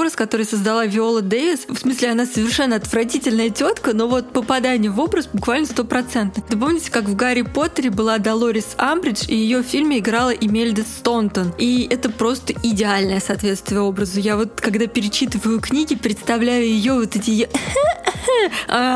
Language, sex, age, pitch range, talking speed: Russian, female, 20-39, 220-260 Hz, 155 wpm